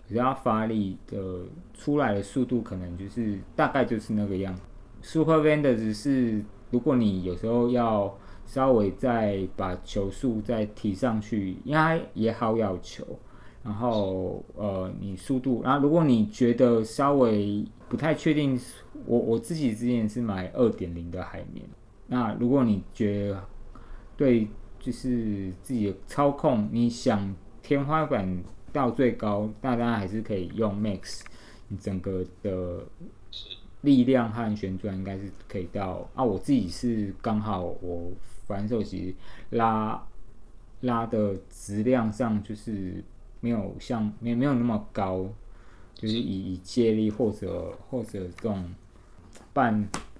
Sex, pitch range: male, 95-120 Hz